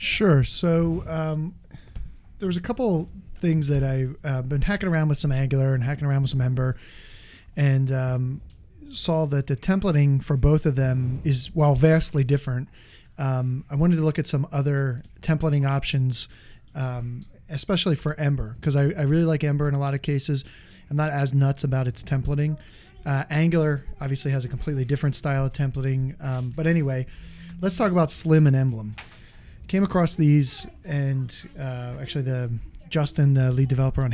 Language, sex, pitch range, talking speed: English, male, 130-160 Hz, 175 wpm